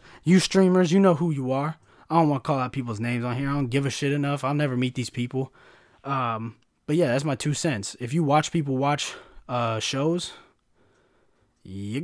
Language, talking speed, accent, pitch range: English, 215 wpm, American, 125-165 Hz